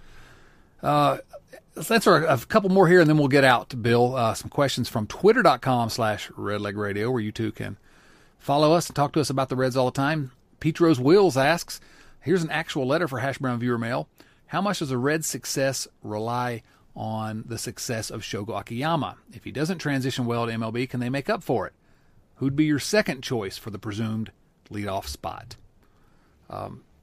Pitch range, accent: 110-135 Hz, American